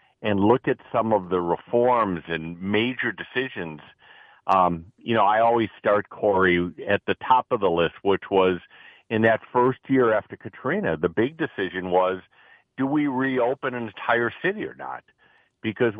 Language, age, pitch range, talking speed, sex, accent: English, 50-69, 95-125 Hz, 165 wpm, male, American